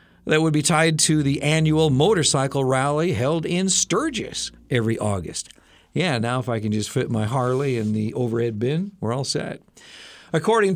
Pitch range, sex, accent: 110-150 Hz, male, American